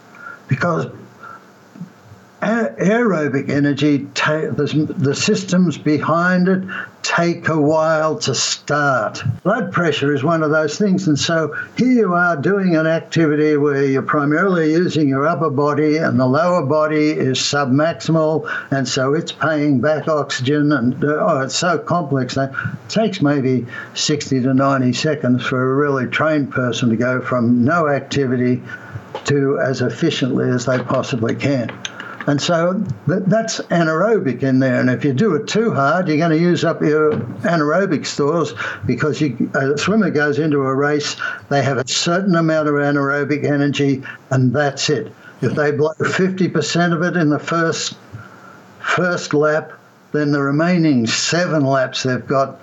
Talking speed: 150 wpm